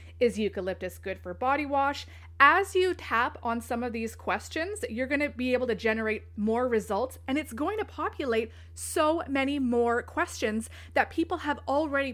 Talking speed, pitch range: 180 wpm, 200-280 Hz